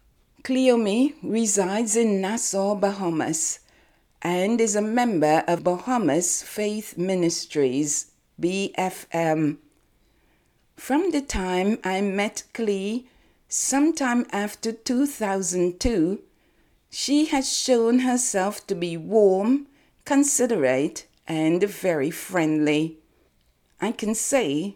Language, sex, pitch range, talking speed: English, female, 175-245 Hz, 90 wpm